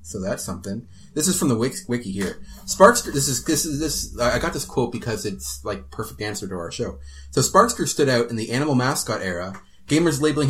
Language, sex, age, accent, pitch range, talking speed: English, male, 30-49, American, 100-140 Hz, 215 wpm